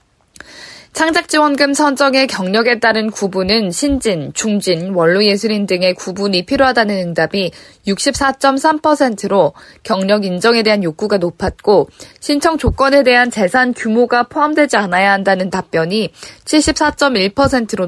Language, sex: Korean, female